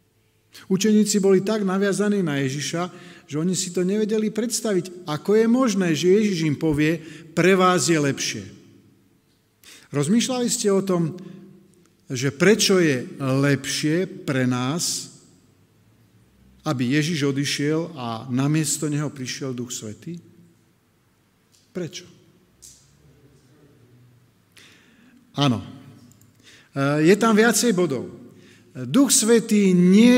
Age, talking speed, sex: 50-69, 100 wpm, male